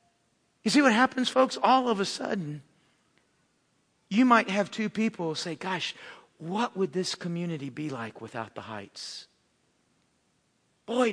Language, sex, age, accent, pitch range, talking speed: English, male, 50-69, American, 175-240 Hz, 140 wpm